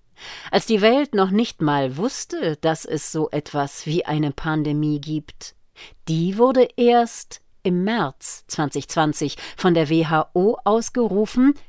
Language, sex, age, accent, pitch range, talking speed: German, female, 40-59, German, 155-205 Hz, 130 wpm